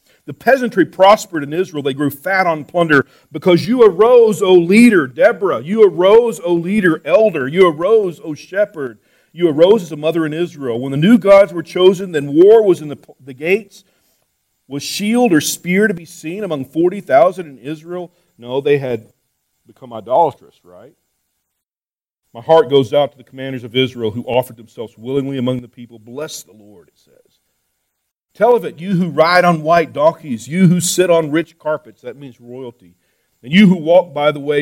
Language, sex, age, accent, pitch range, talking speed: English, male, 40-59, American, 140-185 Hz, 185 wpm